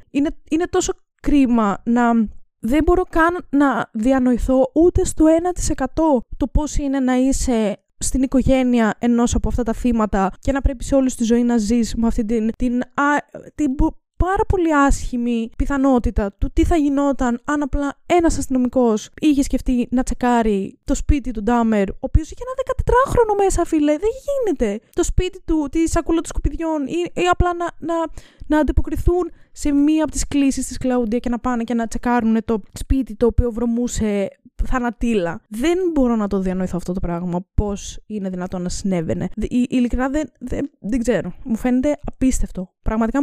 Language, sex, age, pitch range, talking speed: Greek, female, 20-39, 225-295 Hz, 175 wpm